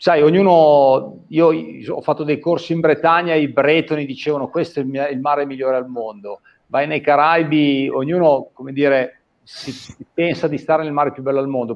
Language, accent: Italian, native